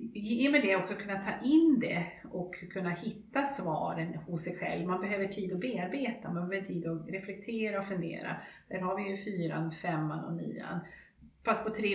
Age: 40-59